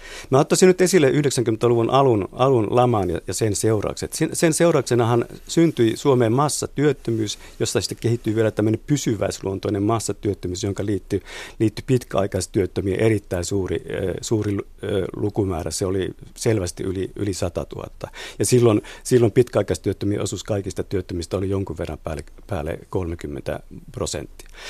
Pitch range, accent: 100-130 Hz, native